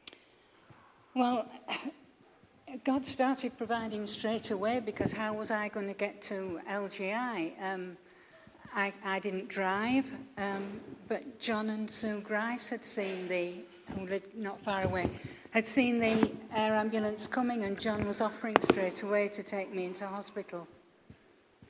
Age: 60-79